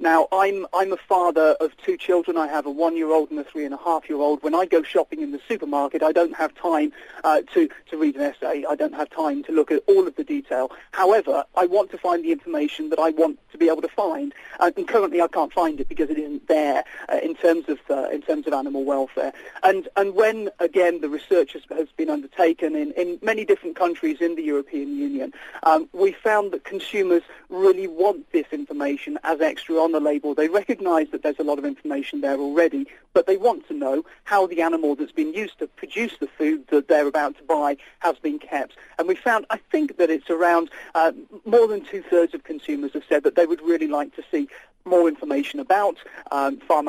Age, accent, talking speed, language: 40-59, British, 220 wpm, English